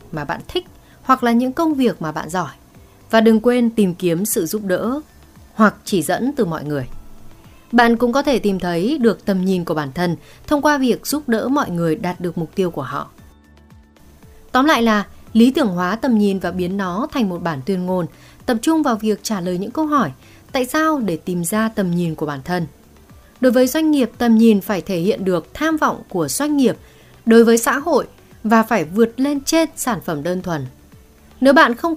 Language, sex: Vietnamese, female